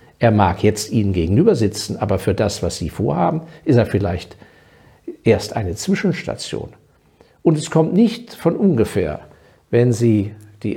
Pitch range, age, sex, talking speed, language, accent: 100-140 Hz, 60-79, male, 150 wpm, German, German